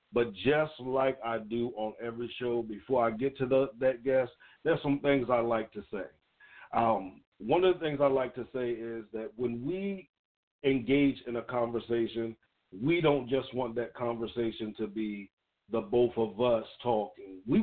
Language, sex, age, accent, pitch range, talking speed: English, male, 50-69, American, 120-150 Hz, 180 wpm